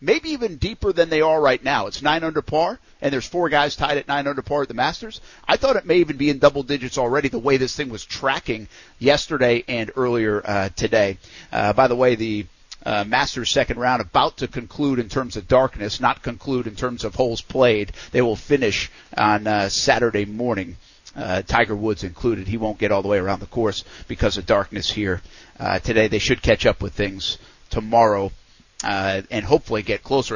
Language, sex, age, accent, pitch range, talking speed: English, male, 50-69, American, 105-140 Hz, 210 wpm